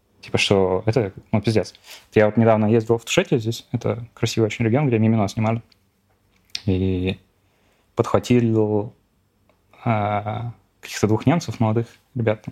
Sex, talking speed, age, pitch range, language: male, 130 wpm, 20-39, 100-120 Hz, Russian